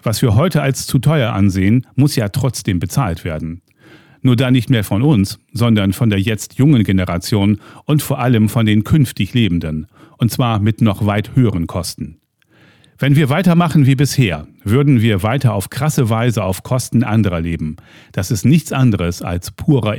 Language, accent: German, German